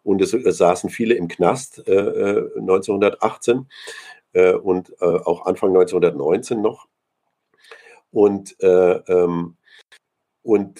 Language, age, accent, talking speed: German, 50-69, German, 85 wpm